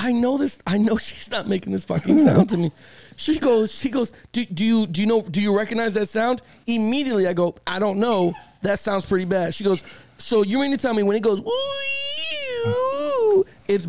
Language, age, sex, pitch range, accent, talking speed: English, 20-39, male, 190-265 Hz, American, 215 wpm